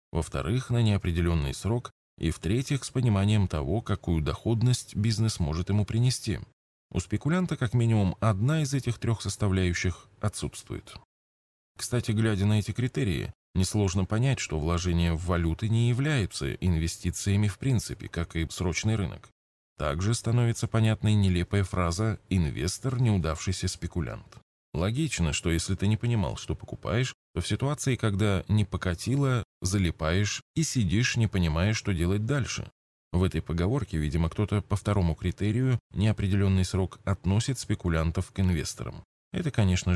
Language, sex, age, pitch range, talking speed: Russian, male, 20-39, 85-115 Hz, 135 wpm